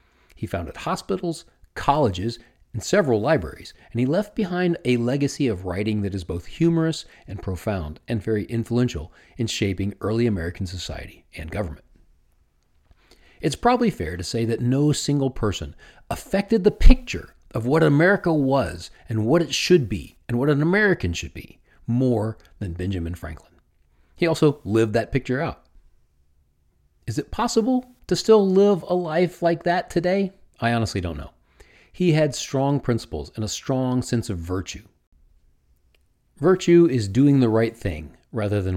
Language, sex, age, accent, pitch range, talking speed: English, male, 40-59, American, 85-140 Hz, 155 wpm